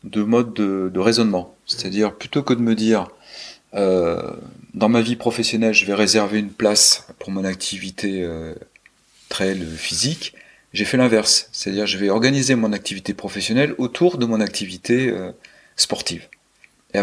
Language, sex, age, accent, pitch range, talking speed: French, male, 40-59, French, 90-110 Hz, 160 wpm